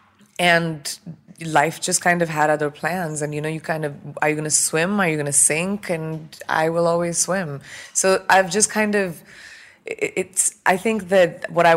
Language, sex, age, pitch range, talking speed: English, female, 20-39, 145-170 Hz, 205 wpm